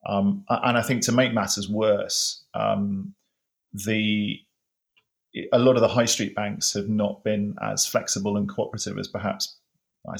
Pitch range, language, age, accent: 100-120 Hz, English, 30-49, British